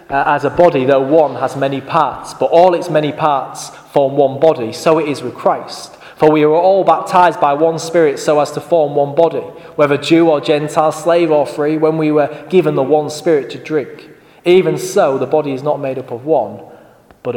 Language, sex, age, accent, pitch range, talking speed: English, male, 20-39, British, 140-175 Hz, 215 wpm